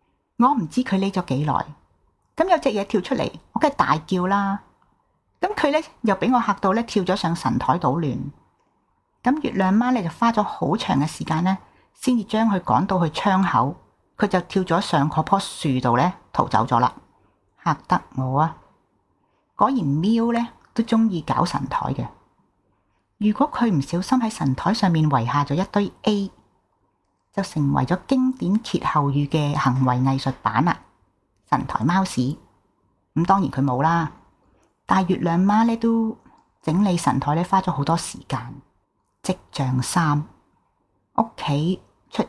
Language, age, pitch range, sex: Chinese, 40-59, 145-205 Hz, female